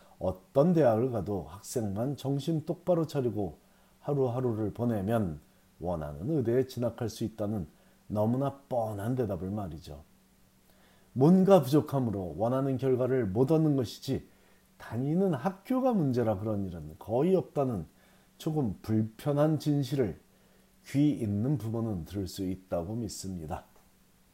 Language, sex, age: Korean, male, 40-59